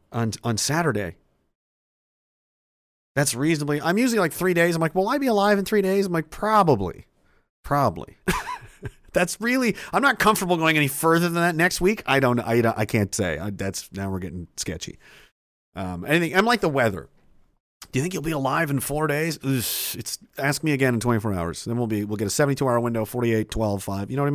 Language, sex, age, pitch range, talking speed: English, male, 40-59, 100-160 Hz, 205 wpm